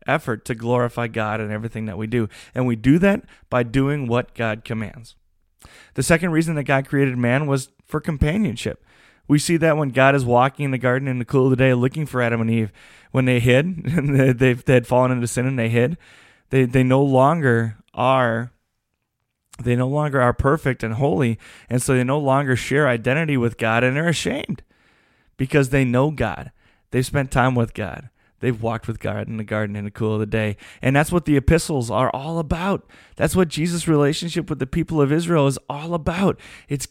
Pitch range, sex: 115-145 Hz, male